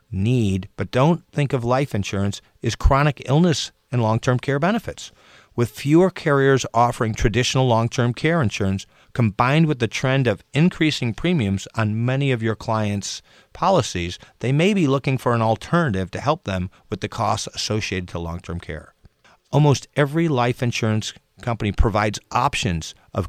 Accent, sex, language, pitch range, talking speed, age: American, male, English, 105-140 Hz, 155 wpm, 50-69